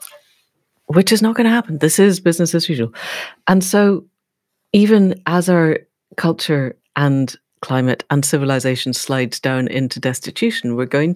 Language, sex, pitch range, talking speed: English, female, 130-170 Hz, 145 wpm